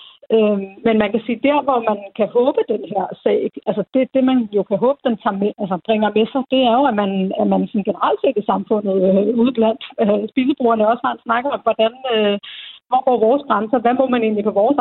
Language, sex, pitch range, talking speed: Danish, female, 210-240 Hz, 235 wpm